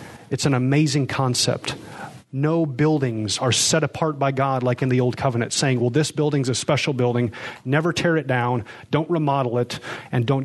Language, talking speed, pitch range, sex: English, 185 wpm, 125-155 Hz, male